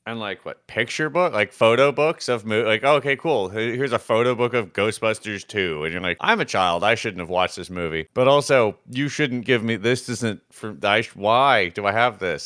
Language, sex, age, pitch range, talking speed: English, male, 30-49, 100-130 Hz, 225 wpm